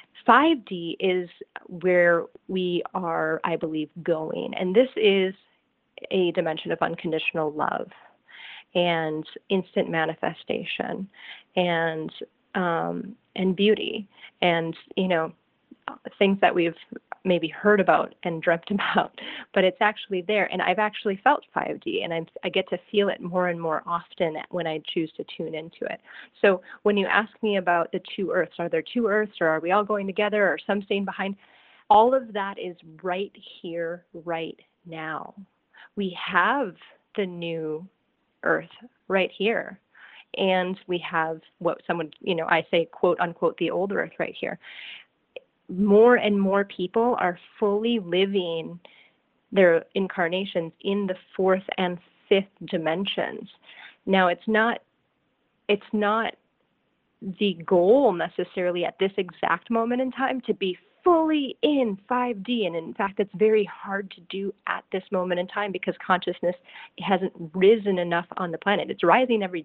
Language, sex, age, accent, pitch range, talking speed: English, female, 30-49, American, 170-210 Hz, 150 wpm